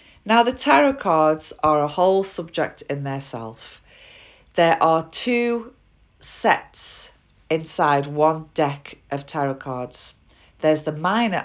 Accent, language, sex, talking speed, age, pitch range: British, English, female, 125 wpm, 40-59, 140-170 Hz